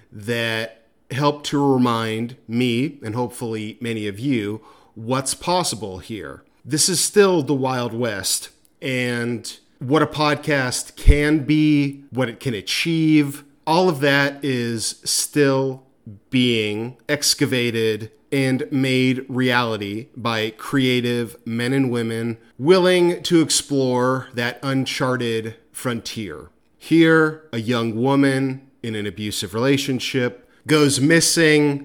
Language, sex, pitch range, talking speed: English, male, 115-140 Hz, 115 wpm